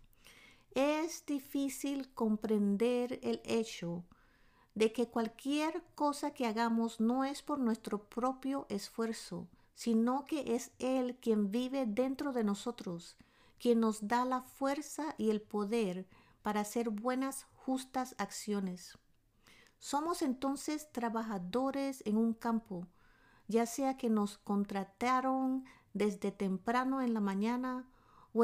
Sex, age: female, 50-69